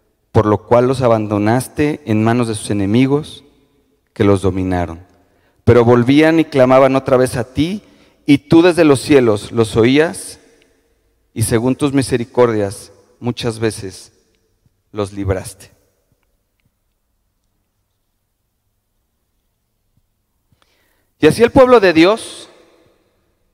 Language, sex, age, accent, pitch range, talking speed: Spanish, male, 40-59, Mexican, 105-155 Hz, 105 wpm